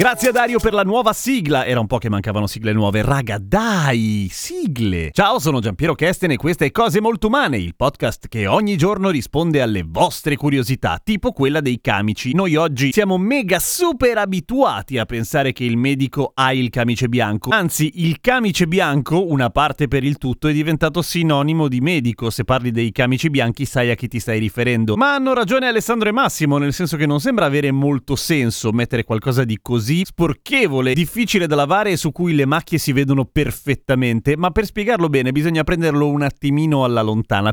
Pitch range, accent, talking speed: 125-190 Hz, native, 190 wpm